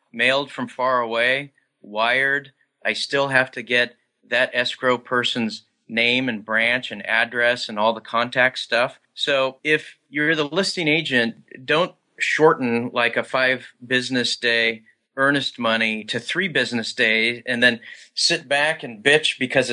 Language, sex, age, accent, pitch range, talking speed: English, male, 40-59, American, 115-135 Hz, 150 wpm